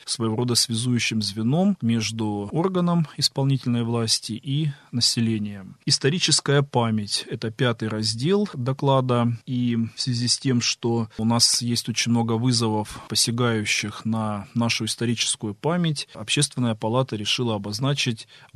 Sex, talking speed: male, 120 wpm